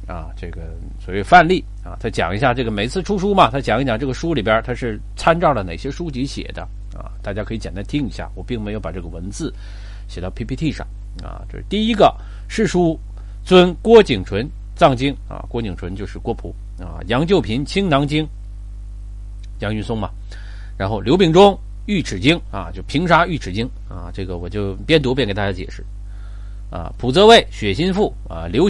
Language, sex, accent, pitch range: Chinese, male, native, 100-150 Hz